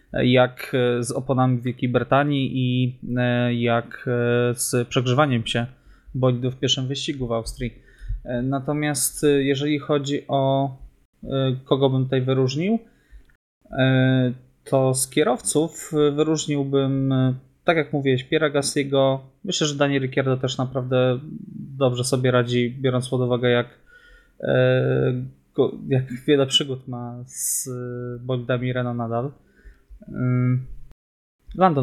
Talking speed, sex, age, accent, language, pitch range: 105 wpm, male, 20-39, native, Polish, 125-140 Hz